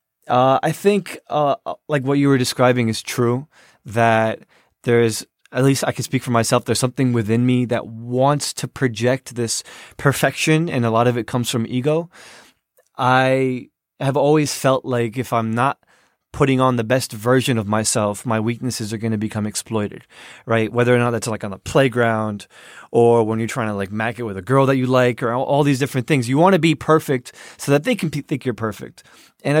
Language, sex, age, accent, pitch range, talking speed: English, male, 20-39, American, 120-145 Hz, 205 wpm